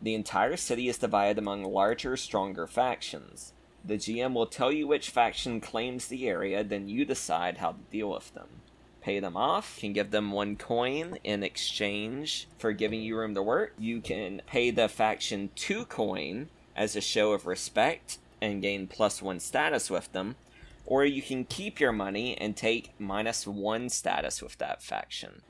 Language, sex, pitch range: English, male, 100-120 Hz